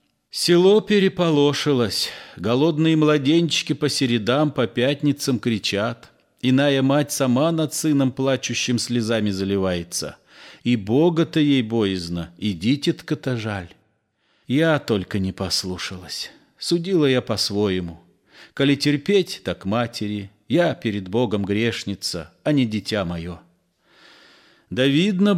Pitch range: 105-155 Hz